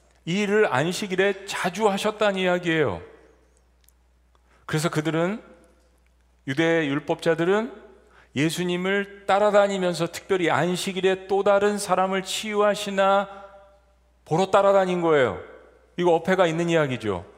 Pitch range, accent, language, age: 140-195 Hz, native, Korean, 40-59